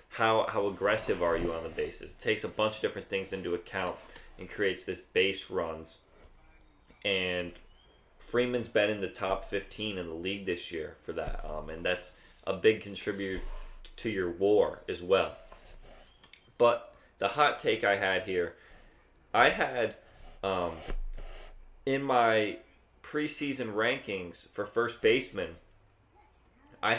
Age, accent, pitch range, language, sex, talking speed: 20-39, American, 90-120 Hz, English, male, 145 wpm